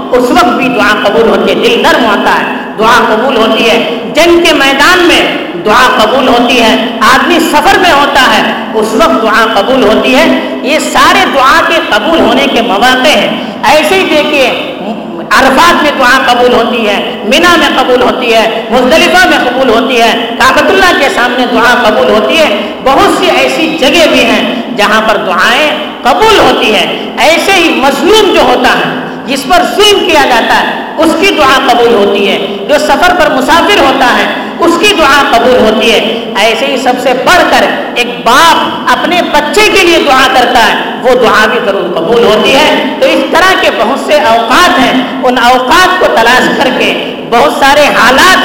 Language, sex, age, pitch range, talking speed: Urdu, female, 50-69, 235-320 Hz, 185 wpm